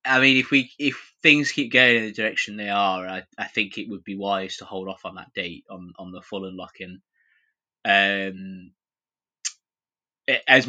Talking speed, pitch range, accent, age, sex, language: 185 wpm, 95-120 Hz, British, 20-39, male, English